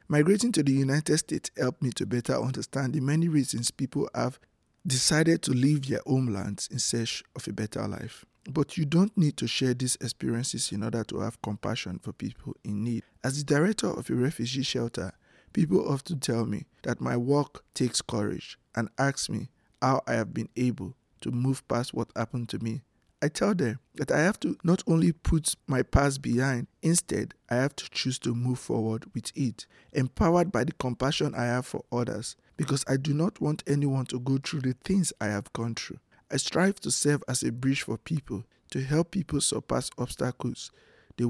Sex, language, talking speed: male, English, 195 wpm